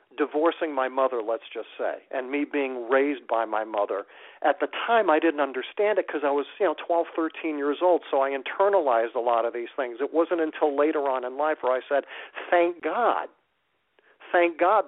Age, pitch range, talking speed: 50-69, 130-165 Hz, 205 wpm